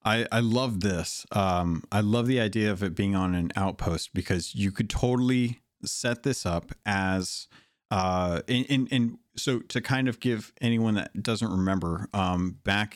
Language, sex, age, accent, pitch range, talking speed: English, male, 40-59, American, 90-110 Hz, 180 wpm